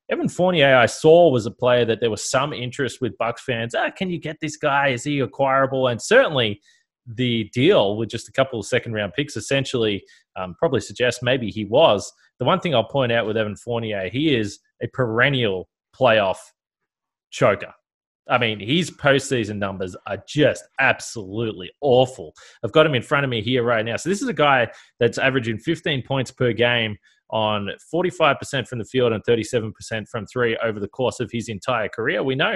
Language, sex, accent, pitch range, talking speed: English, male, Australian, 110-135 Hz, 195 wpm